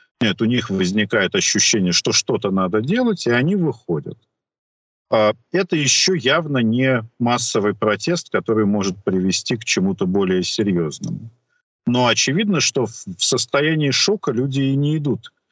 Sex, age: male, 50-69